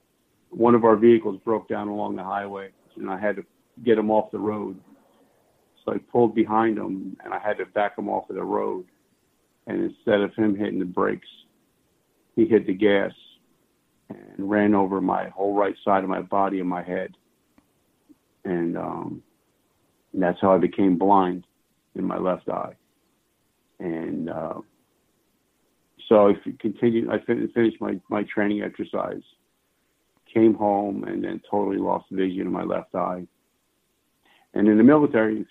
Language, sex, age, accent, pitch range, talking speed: English, male, 50-69, American, 95-110 Hz, 165 wpm